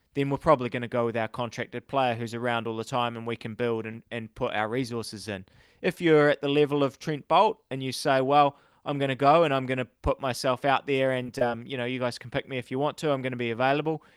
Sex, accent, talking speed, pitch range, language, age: male, Australian, 285 wpm, 115-135 Hz, English, 20-39